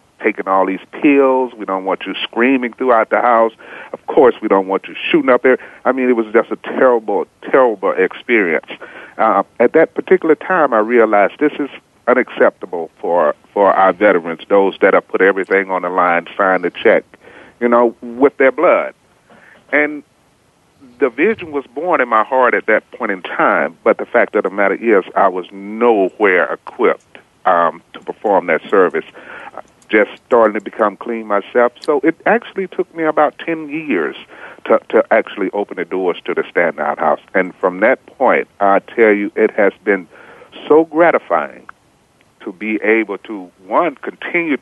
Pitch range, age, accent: 100-150 Hz, 40-59, American